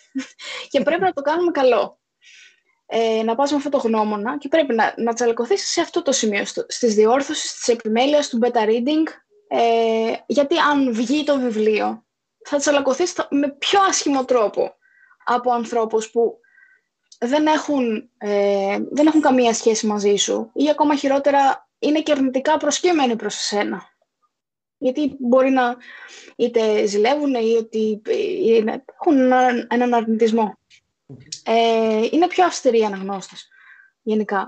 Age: 20-39